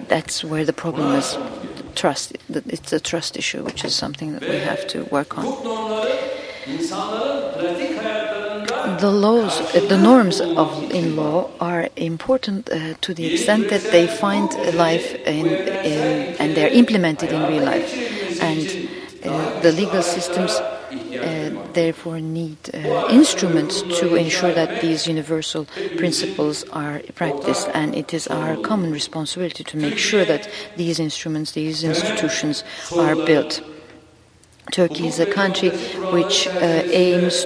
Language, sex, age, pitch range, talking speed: English, female, 40-59, 155-190 Hz, 140 wpm